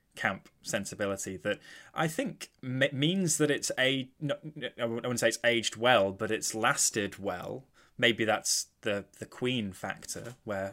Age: 10-29